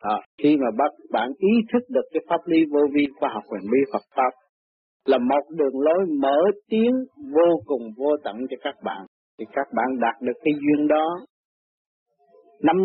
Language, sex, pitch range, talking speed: Vietnamese, male, 130-170 Hz, 195 wpm